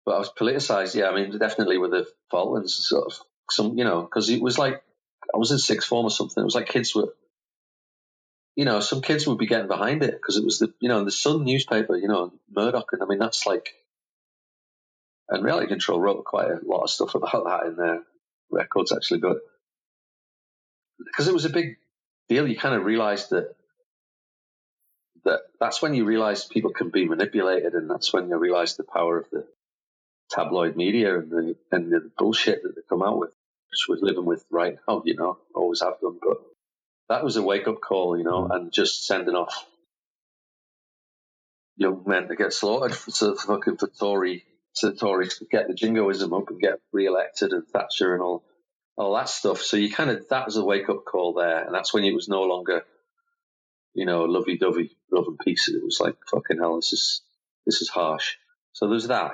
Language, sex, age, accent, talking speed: English, male, 40-59, British, 205 wpm